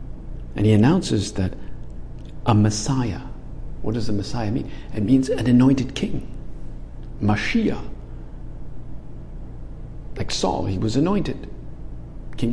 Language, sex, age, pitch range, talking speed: English, male, 50-69, 95-125 Hz, 110 wpm